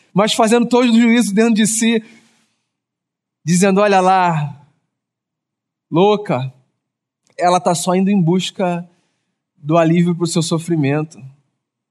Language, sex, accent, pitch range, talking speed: Portuguese, male, Brazilian, 165-210 Hz, 120 wpm